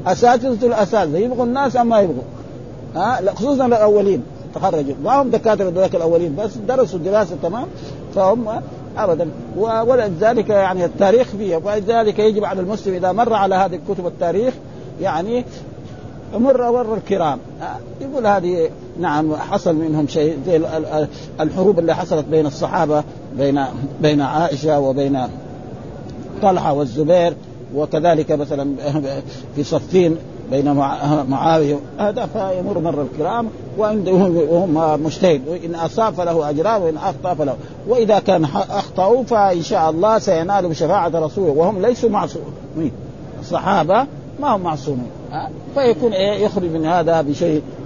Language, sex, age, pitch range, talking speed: Arabic, male, 50-69, 155-210 Hz, 125 wpm